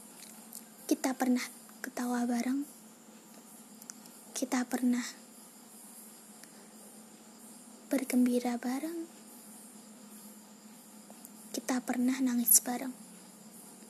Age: 20-39